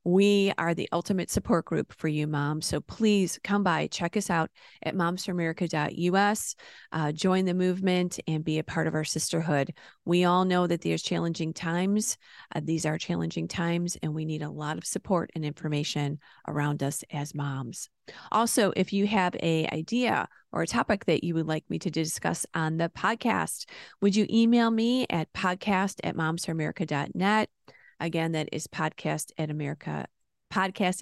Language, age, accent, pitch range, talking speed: English, 30-49, American, 155-190 Hz, 170 wpm